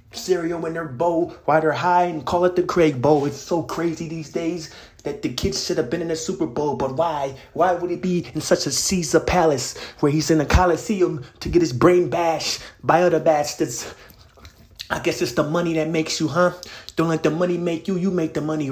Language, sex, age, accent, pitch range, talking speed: English, male, 30-49, American, 155-175 Hz, 225 wpm